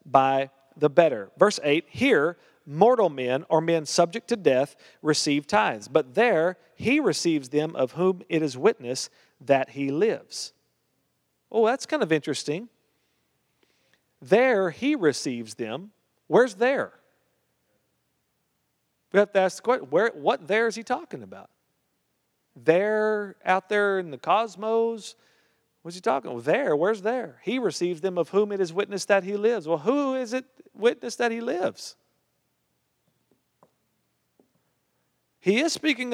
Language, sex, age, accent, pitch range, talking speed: English, male, 40-59, American, 155-230 Hz, 145 wpm